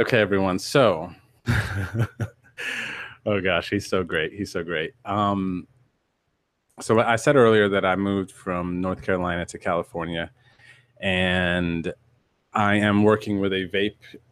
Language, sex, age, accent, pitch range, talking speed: English, male, 30-49, American, 95-110 Hz, 130 wpm